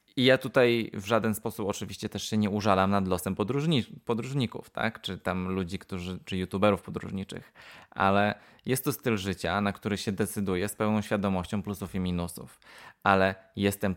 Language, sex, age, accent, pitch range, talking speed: Polish, male, 20-39, native, 90-105 Hz, 170 wpm